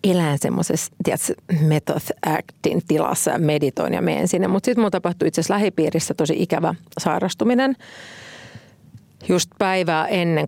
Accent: native